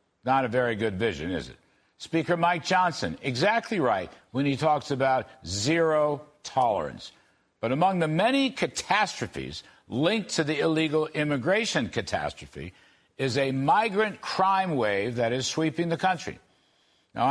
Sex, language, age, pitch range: male, English, 60-79, 130-180 Hz